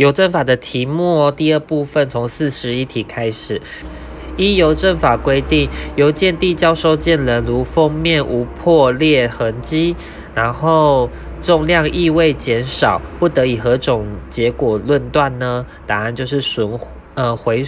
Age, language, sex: 20-39, Chinese, male